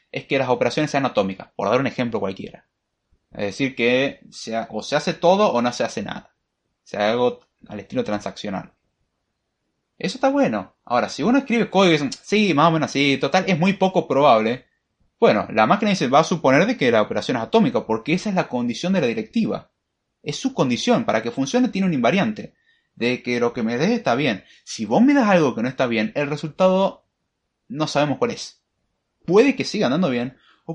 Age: 20-39